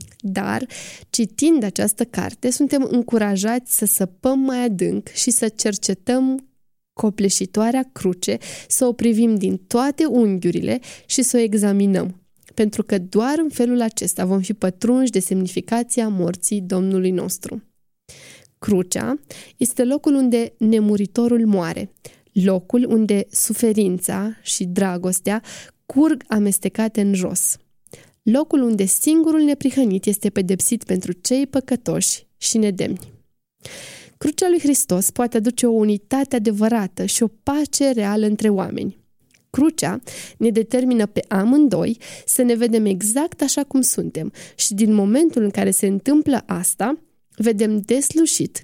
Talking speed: 125 wpm